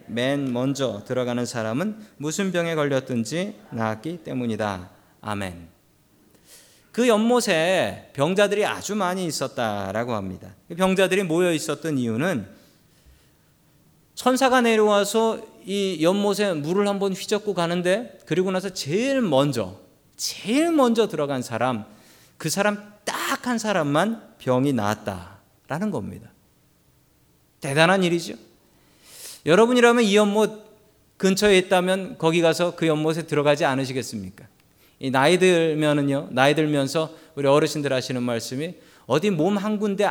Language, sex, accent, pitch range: Korean, male, native, 130-205 Hz